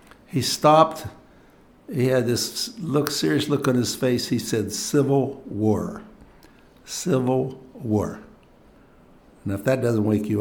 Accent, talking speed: American, 135 wpm